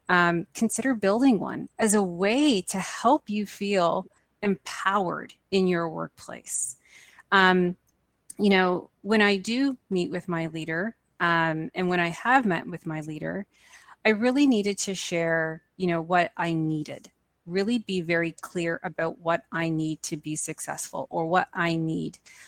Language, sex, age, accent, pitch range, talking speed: English, female, 30-49, American, 170-220 Hz, 160 wpm